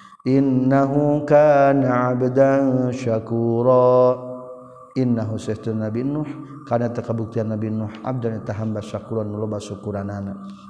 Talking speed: 80 wpm